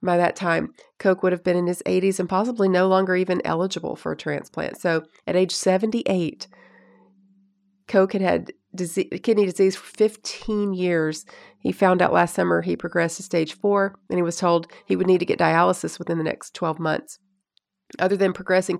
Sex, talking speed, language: female, 190 wpm, English